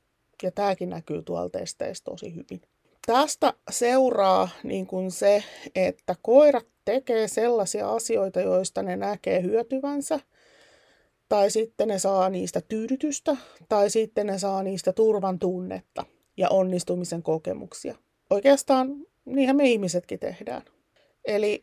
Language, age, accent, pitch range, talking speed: Finnish, 30-49, native, 175-225 Hz, 115 wpm